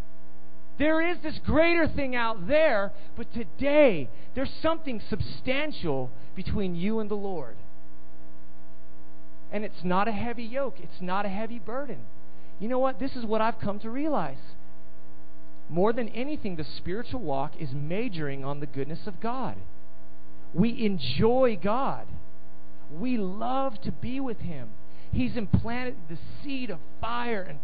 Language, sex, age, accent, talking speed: English, male, 40-59, American, 145 wpm